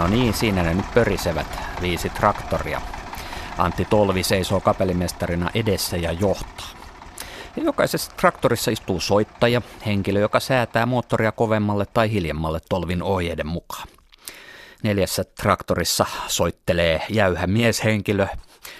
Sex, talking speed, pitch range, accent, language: male, 110 wpm, 85-105 Hz, native, Finnish